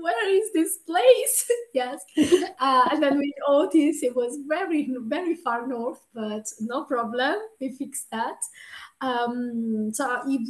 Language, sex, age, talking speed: English, female, 30-49, 145 wpm